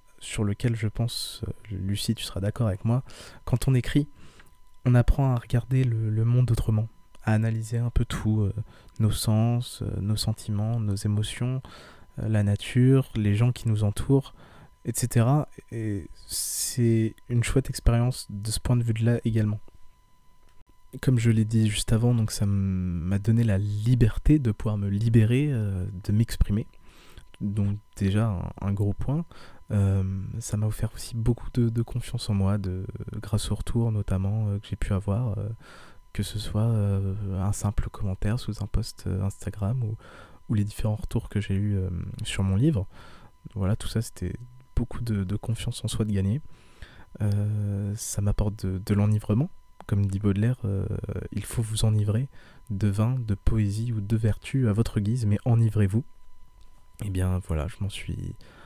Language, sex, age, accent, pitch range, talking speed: French, male, 20-39, French, 100-115 Hz, 175 wpm